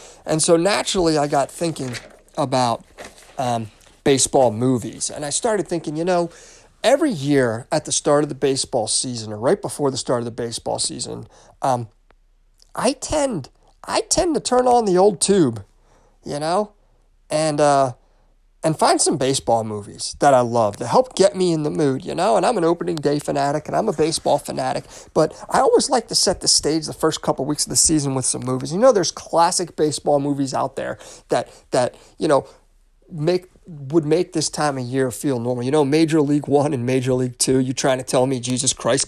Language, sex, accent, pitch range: English, male, American, 130-170 Hz